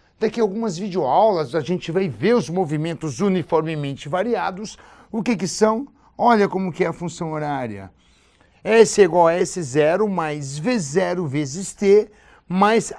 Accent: Brazilian